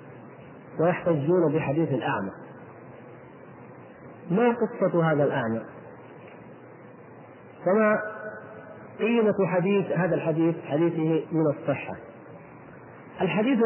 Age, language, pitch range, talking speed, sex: 40-59, Arabic, 160-200 Hz, 70 wpm, male